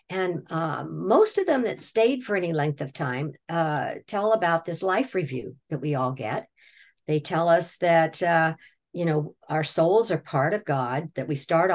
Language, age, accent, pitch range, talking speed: English, 50-69, American, 155-210 Hz, 195 wpm